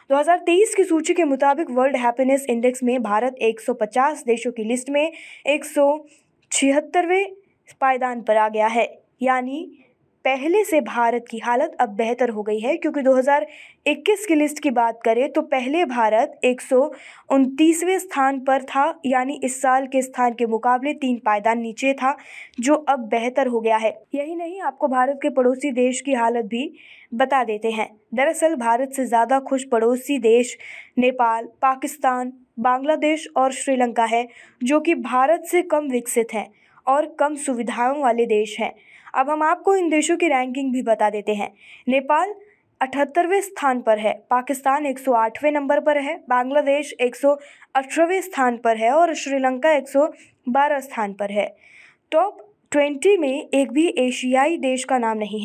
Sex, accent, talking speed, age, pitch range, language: female, native, 155 wpm, 20-39, 240-295 Hz, Hindi